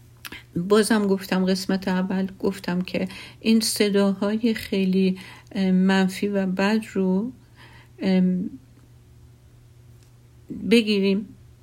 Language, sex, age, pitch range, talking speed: Persian, female, 50-69, 185-205 Hz, 70 wpm